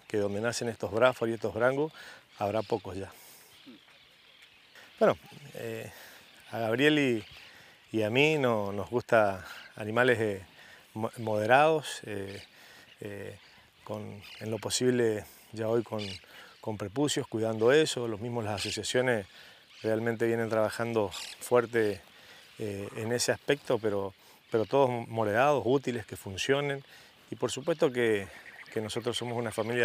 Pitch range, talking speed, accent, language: 105-125 Hz, 135 wpm, Argentinian, Spanish